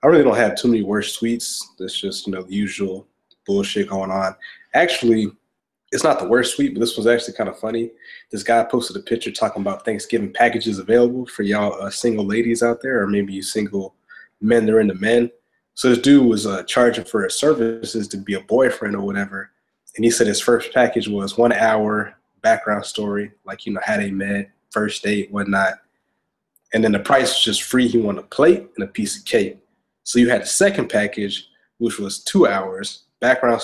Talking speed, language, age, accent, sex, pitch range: 210 wpm, English, 20-39, American, male, 105-125 Hz